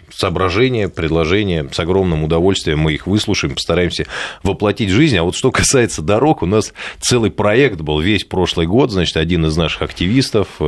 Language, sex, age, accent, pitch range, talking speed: Russian, male, 20-39, native, 80-115 Hz, 170 wpm